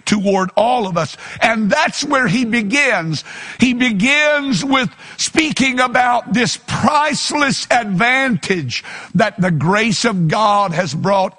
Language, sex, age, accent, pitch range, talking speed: English, male, 60-79, American, 190-255 Hz, 125 wpm